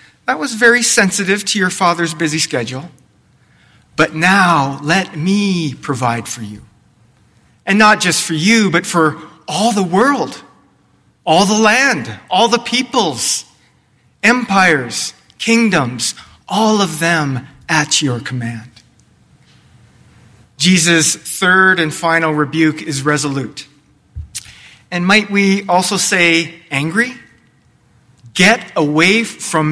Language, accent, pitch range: English, American, 130-185 Hz